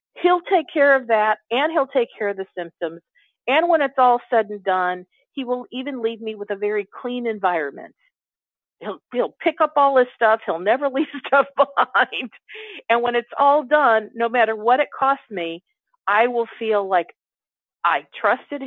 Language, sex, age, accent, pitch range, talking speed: English, female, 50-69, American, 200-285 Hz, 185 wpm